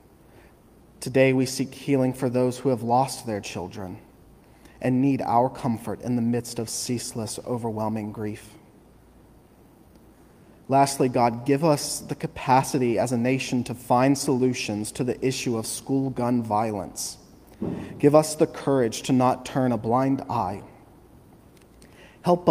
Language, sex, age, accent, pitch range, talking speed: English, male, 30-49, American, 115-135 Hz, 140 wpm